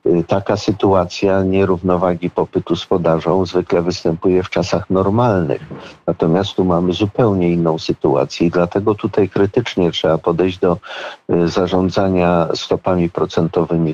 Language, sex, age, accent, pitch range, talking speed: Polish, male, 50-69, native, 85-95 Hz, 115 wpm